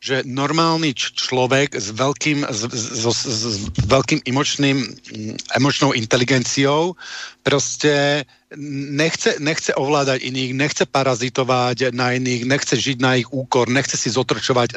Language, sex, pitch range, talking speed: Slovak, male, 125-145 Hz, 120 wpm